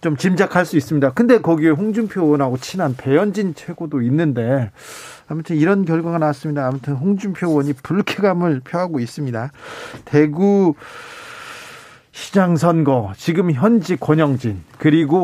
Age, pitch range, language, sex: 40-59, 135-200 Hz, Korean, male